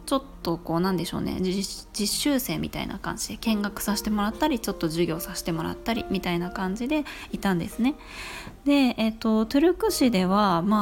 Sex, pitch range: female, 180-230 Hz